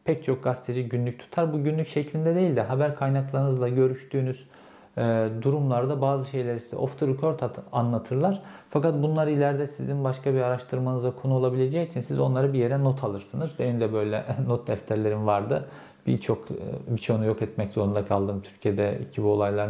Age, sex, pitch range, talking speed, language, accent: 50-69, male, 115-145 Hz, 170 wpm, Turkish, native